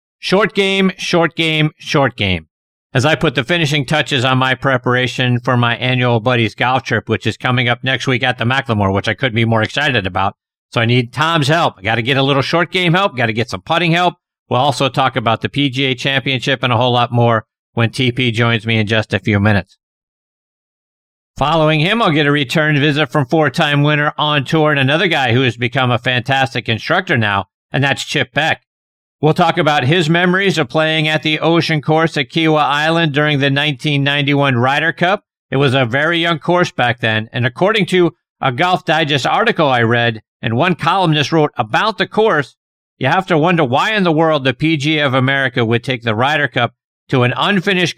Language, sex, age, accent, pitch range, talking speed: English, male, 50-69, American, 120-155 Hz, 210 wpm